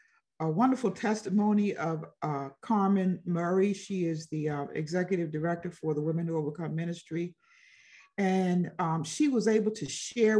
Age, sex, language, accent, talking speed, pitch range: 50-69, female, English, American, 150 wpm, 175-225 Hz